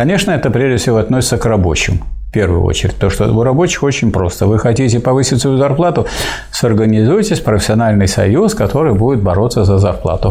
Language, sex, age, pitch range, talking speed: Russian, male, 50-69, 105-140 Hz, 170 wpm